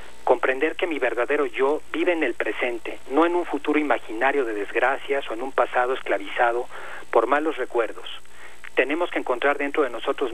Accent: Mexican